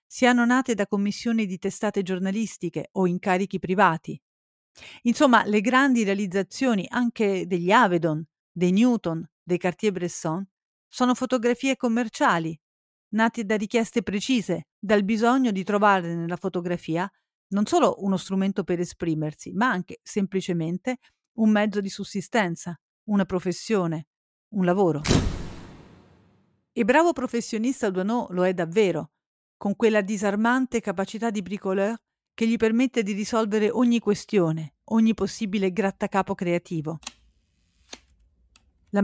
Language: Italian